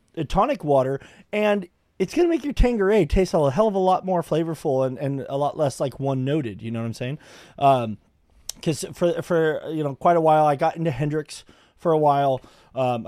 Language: English